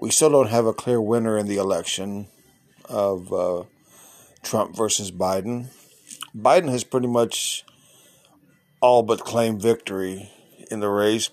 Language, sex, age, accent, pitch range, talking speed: English, male, 50-69, American, 105-125 Hz, 140 wpm